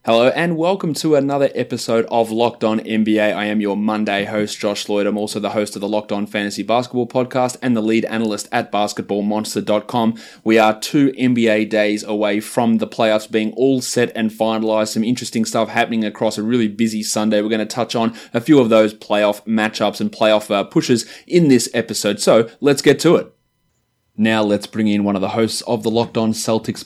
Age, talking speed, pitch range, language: 20-39, 205 wpm, 105-120 Hz, English